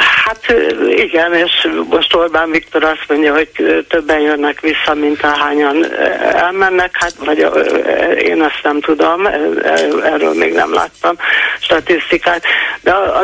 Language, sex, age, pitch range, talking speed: Hungarian, male, 60-79, 150-175 Hz, 125 wpm